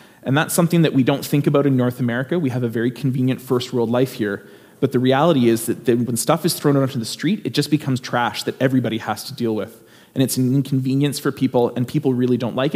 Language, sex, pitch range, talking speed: English, male, 115-135 Hz, 260 wpm